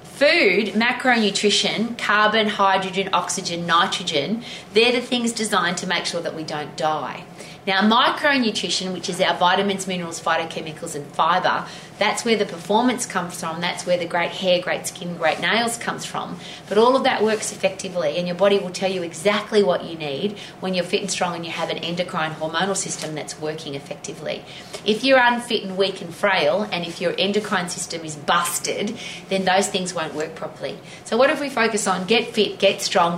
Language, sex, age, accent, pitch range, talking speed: English, female, 30-49, Australian, 170-215 Hz, 190 wpm